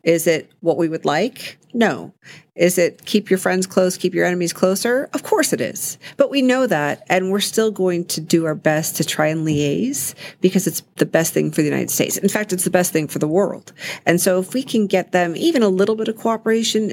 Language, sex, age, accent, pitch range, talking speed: English, female, 40-59, American, 160-195 Hz, 240 wpm